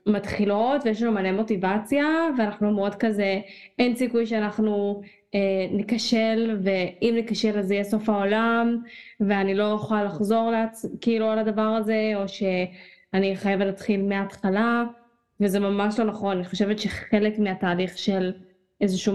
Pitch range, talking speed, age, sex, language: 195-235 Hz, 140 wpm, 10-29, female, Hebrew